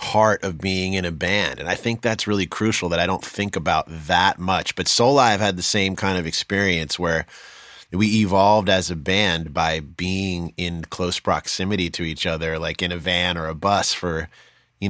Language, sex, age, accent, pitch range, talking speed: English, male, 30-49, American, 90-120 Hz, 205 wpm